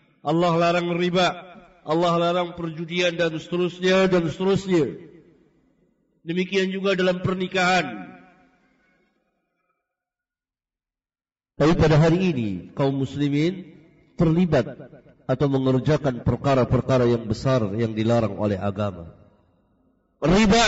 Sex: male